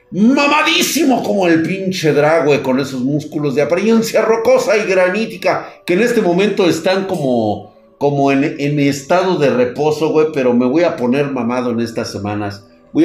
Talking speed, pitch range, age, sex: 165 wpm, 120-195 Hz, 50-69, male